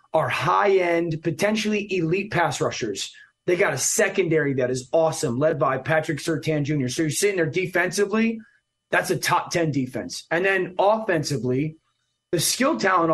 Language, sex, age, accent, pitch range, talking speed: English, male, 30-49, American, 150-195 Hz, 150 wpm